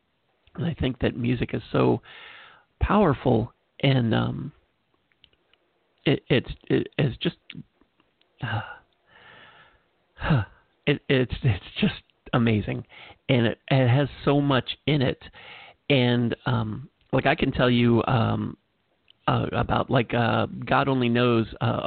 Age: 50-69